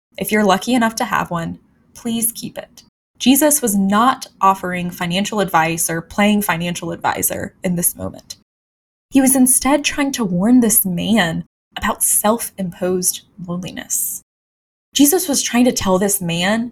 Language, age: English, 10-29